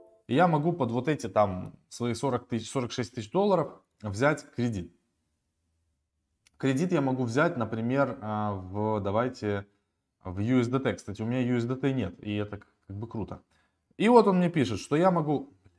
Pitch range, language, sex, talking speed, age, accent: 105-145 Hz, Russian, male, 155 wpm, 20-39, native